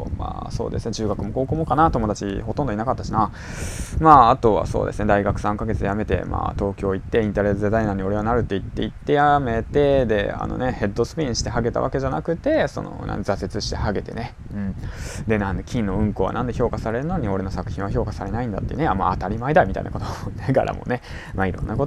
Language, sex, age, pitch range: Japanese, male, 20-39, 95-115 Hz